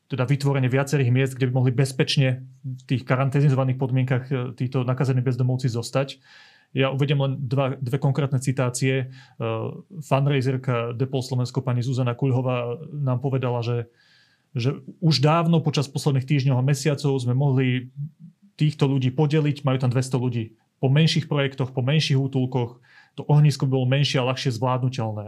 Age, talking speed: 30-49, 145 wpm